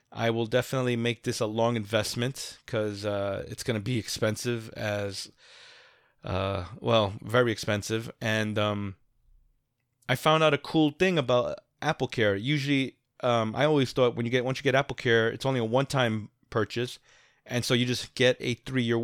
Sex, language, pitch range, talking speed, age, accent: male, English, 115-130 Hz, 160 wpm, 30-49, American